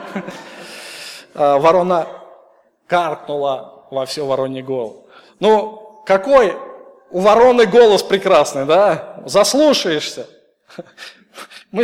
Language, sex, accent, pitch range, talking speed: Russian, male, native, 185-235 Hz, 75 wpm